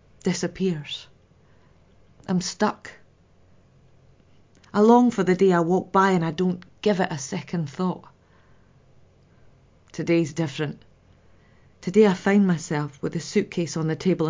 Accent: British